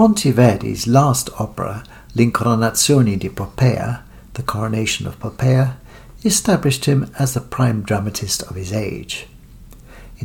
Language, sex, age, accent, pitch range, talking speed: English, male, 60-79, British, 110-135 Hz, 115 wpm